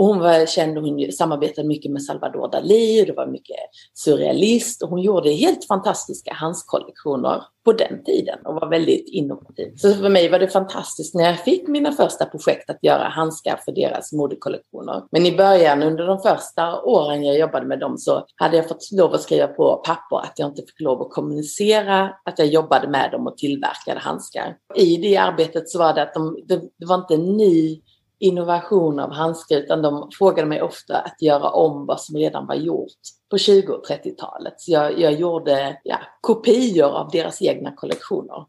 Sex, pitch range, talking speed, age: female, 155-195 Hz, 190 wpm, 30-49